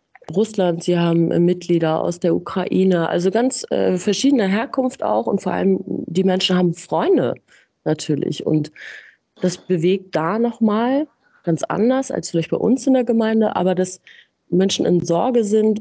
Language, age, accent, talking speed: German, 30-49, German, 155 wpm